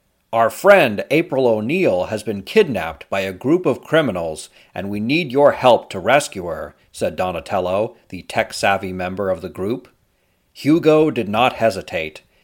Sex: male